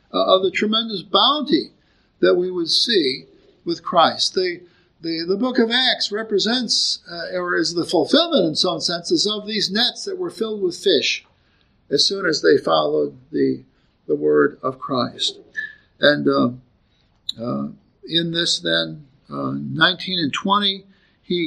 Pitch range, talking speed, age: 170-220 Hz, 150 wpm, 50-69